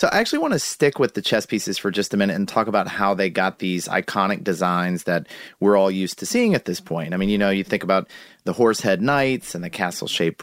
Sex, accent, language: male, American, English